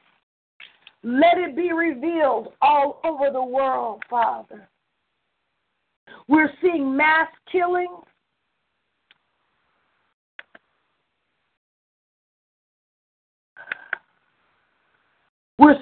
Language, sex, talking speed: English, female, 55 wpm